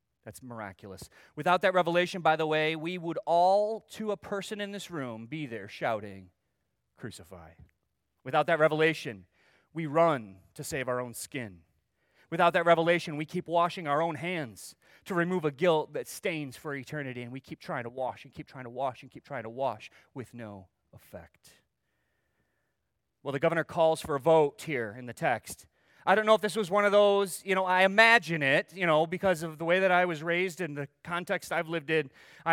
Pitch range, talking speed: 135-205 Hz, 200 wpm